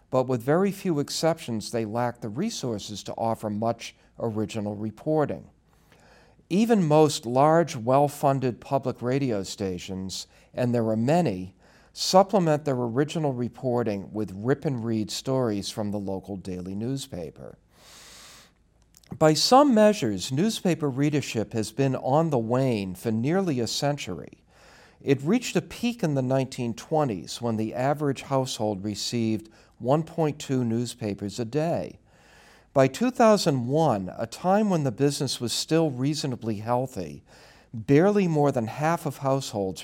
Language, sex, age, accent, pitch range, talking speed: English, male, 50-69, American, 110-155 Hz, 130 wpm